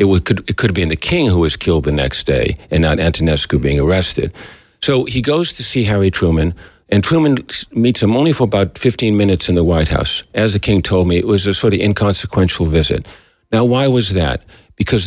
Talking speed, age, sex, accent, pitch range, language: 215 wpm, 50-69, male, American, 85-110 Hz, Romanian